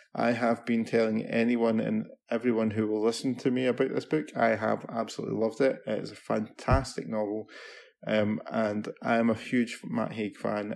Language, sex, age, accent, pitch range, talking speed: English, male, 20-39, British, 110-125 Hz, 190 wpm